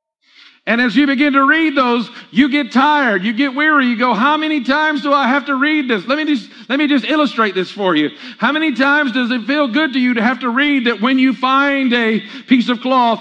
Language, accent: English, American